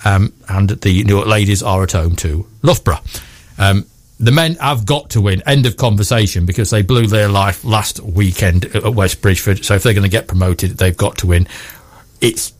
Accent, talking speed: British, 200 wpm